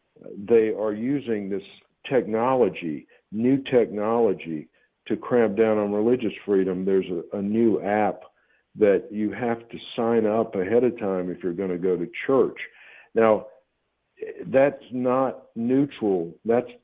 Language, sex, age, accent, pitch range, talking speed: English, male, 60-79, American, 105-130 Hz, 140 wpm